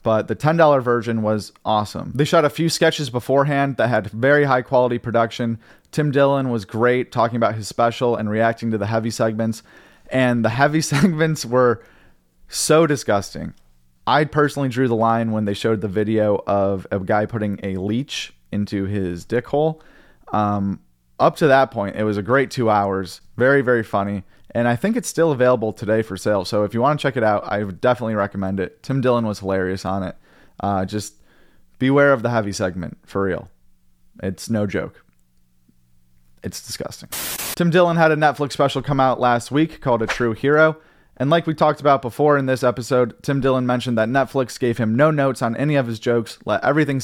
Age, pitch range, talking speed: 30-49, 105-135 Hz, 195 wpm